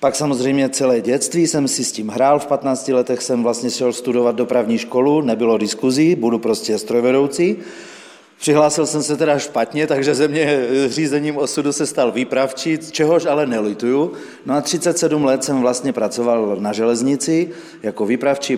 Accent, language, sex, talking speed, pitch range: native, Czech, male, 160 wpm, 125-150 Hz